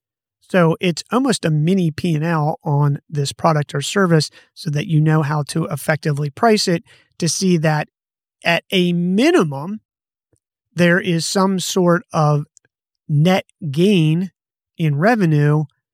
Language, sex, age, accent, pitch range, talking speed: English, male, 30-49, American, 145-175 Hz, 130 wpm